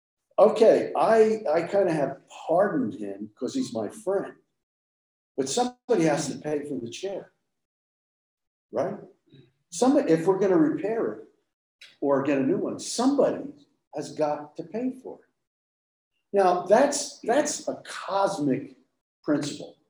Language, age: English, 50-69